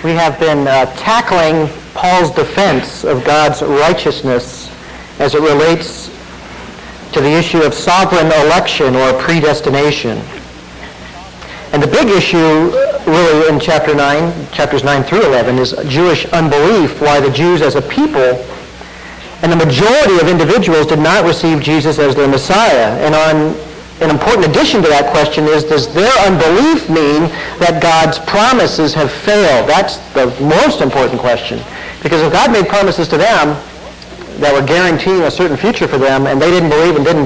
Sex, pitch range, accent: male, 135-165 Hz, American